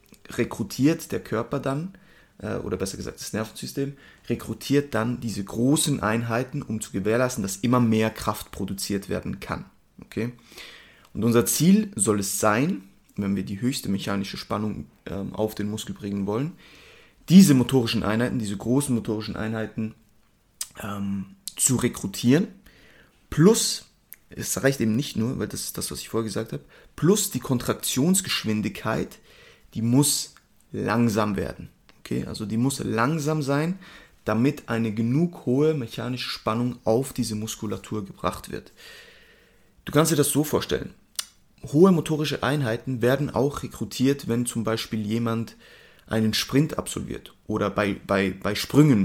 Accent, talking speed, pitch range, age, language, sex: German, 140 wpm, 110-140 Hz, 30-49, German, male